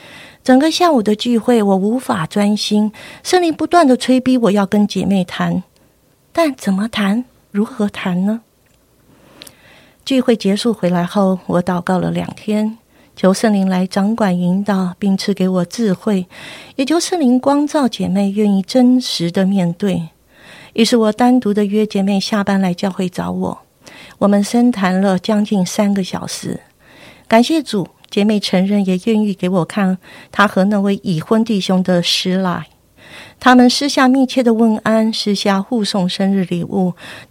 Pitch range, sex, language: 190-230 Hz, female, Chinese